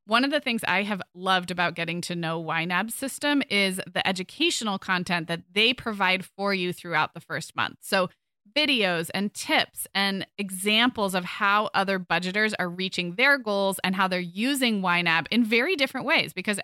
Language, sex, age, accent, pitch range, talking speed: English, female, 20-39, American, 180-230 Hz, 180 wpm